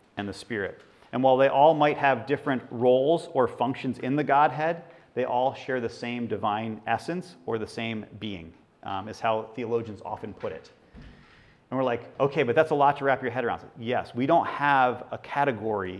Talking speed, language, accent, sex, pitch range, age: 200 wpm, English, American, male, 115-150 Hz, 30-49